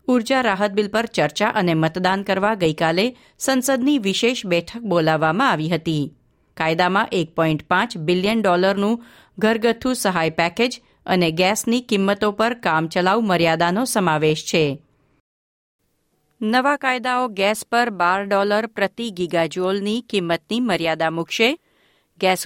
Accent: native